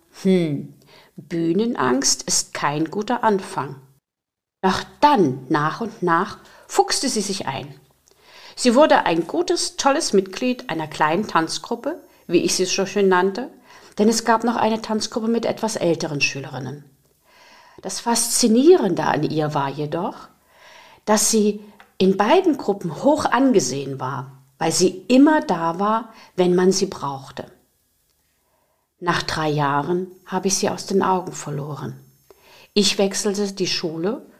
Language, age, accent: German, 50-69, German